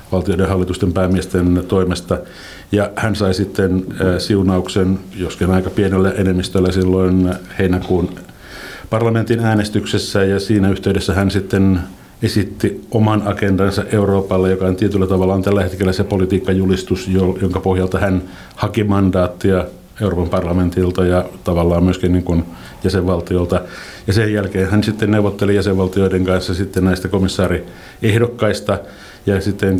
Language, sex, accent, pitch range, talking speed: Finnish, male, native, 90-100 Hz, 120 wpm